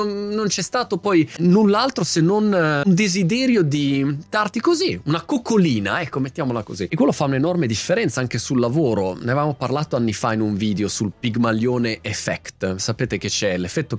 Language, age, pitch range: Italian, 30-49, 110-160 Hz